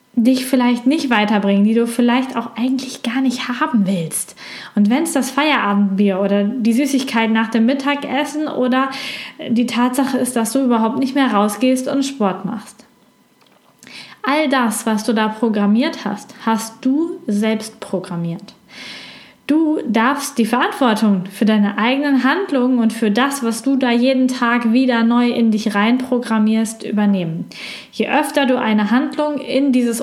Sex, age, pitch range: female, 10-29, 210-265 Hz